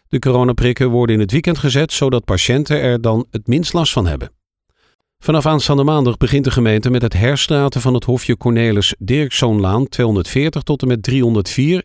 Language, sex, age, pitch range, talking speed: Dutch, male, 40-59, 110-140 Hz, 175 wpm